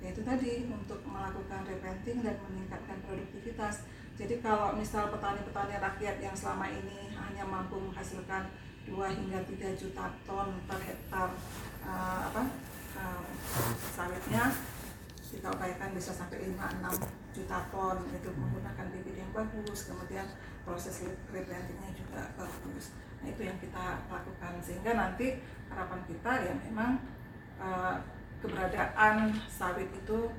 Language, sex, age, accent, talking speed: Indonesian, female, 40-59, native, 120 wpm